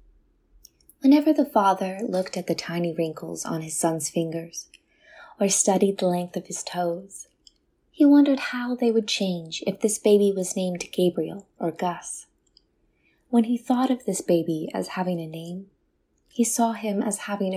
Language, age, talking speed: English, 20-39, 165 wpm